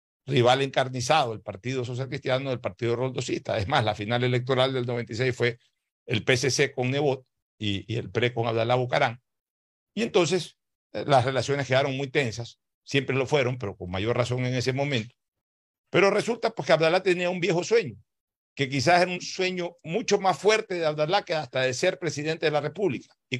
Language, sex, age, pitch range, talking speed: Spanish, male, 60-79, 120-155 Hz, 185 wpm